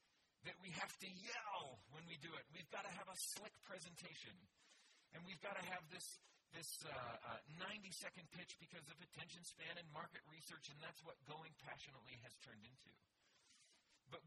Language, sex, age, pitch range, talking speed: English, male, 40-59, 130-180 Hz, 180 wpm